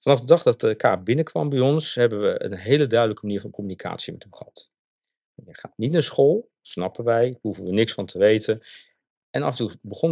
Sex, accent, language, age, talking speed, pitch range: male, Dutch, Dutch, 50-69, 225 wpm, 110-155 Hz